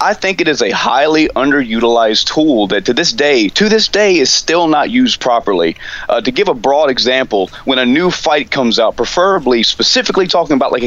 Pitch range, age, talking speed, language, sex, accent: 115-175 Hz, 30-49, 205 wpm, English, male, American